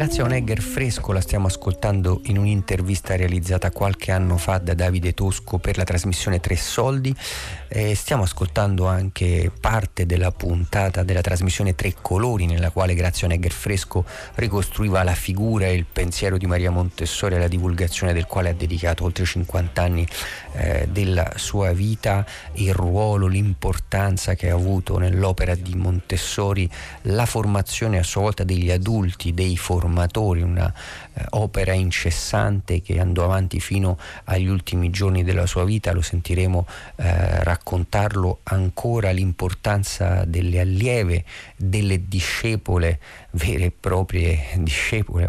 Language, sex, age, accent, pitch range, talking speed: Italian, male, 40-59, native, 90-100 Hz, 140 wpm